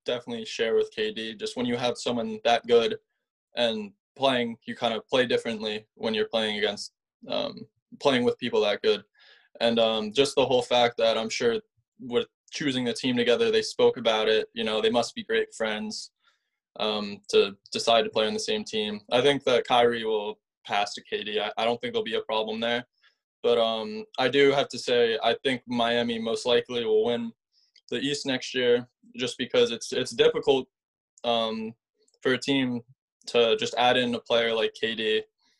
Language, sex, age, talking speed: English, male, 20-39, 190 wpm